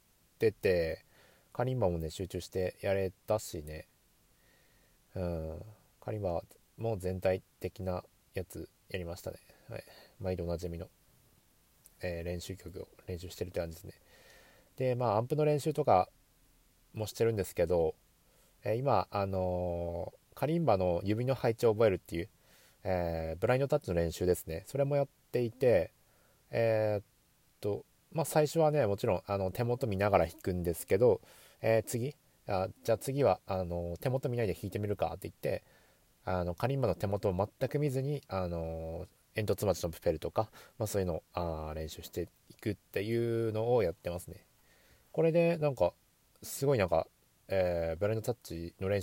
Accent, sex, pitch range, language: Japanese, male, 90-125 Hz, Chinese